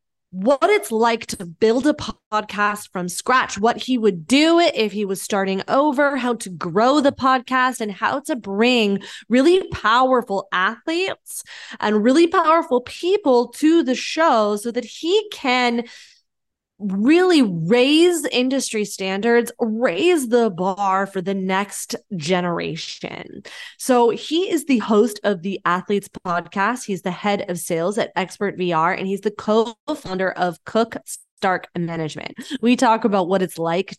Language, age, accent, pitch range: English, 20-39, American, 185-255 Hz